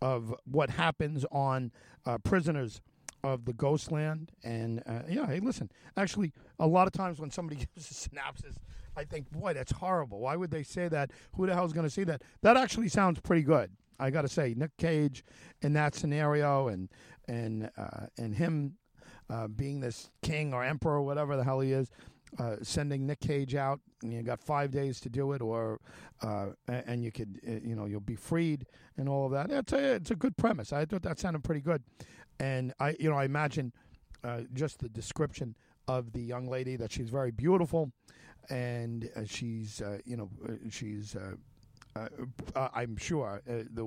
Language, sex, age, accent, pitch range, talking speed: English, male, 50-69, American, 115-155 Hz, 195 wpm